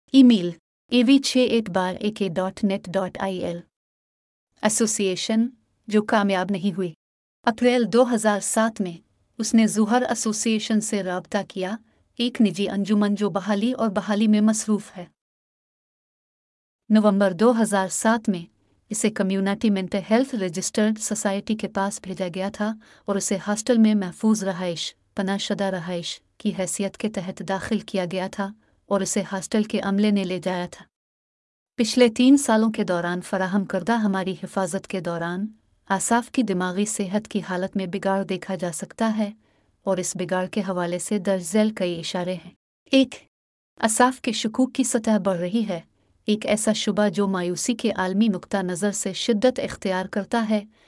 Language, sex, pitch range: Urdu, female, 190-220 Hz